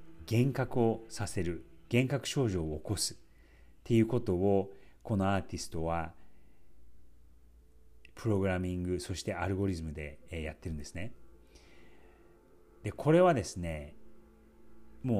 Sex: male